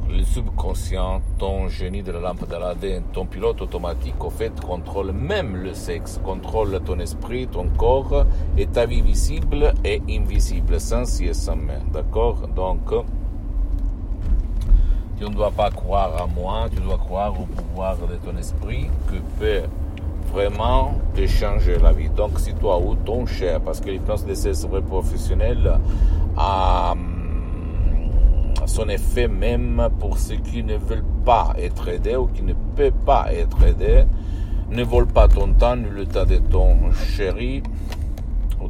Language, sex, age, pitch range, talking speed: Italian, male, 50-69, 75-95 Hz, 160 wpm